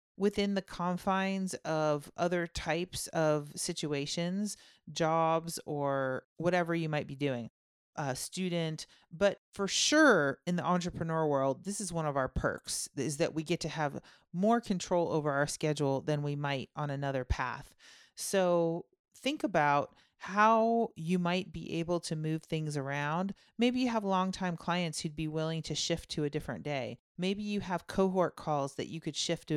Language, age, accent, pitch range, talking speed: English, 40-59, American, 150-190 Hz, 170 wpm